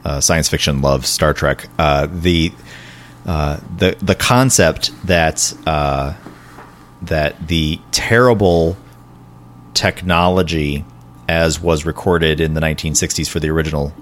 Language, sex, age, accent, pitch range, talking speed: English, male, 30-49, American, 75-100 Hz, 115 wpm